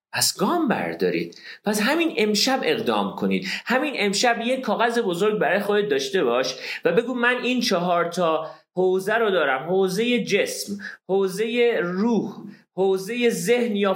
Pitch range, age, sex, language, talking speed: 160-225 Hz, 40-59, male, Persian, 140 wpm